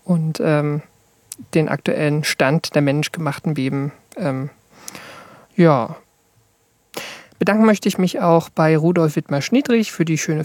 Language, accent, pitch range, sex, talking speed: German, German, 155-185 Hz, male, 115 wpm